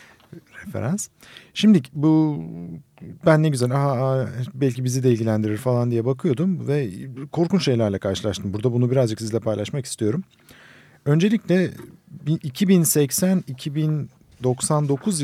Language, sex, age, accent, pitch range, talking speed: Turkish, male, 50-69, native, 110-155 Hz, 100 wpm